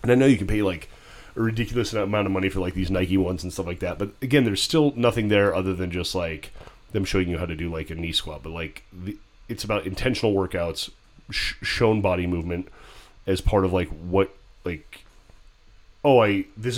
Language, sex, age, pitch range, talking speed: English, male, 30-49, 90-110 Hz, 220 wpm